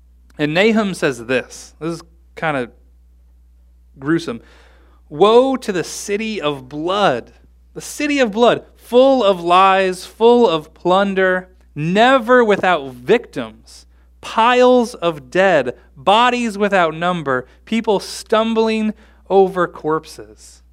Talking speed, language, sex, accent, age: 110 wpm, English, male, American, 30-49